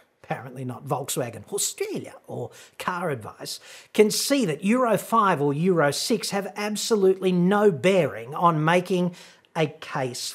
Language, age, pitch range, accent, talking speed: English, 40-59, 140-195 Hz, Australian, 135 wpm